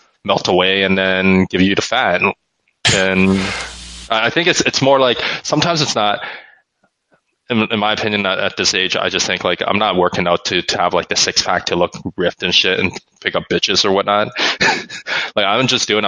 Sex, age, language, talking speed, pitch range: male, 20-39, English, 210 wpm, 90-100 Hz